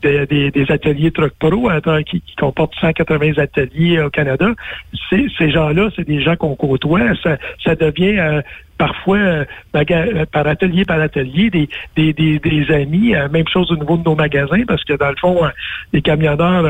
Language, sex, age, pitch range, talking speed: French, male, 60-79, 145-170 Hz, 200 wpm